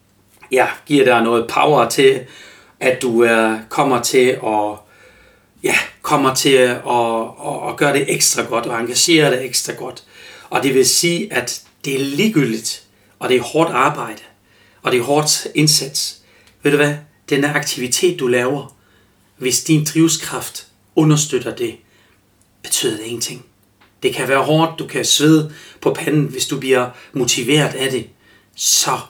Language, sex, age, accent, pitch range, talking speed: Danish, male, 40-59, native, 115-155 Hz, 155 wpm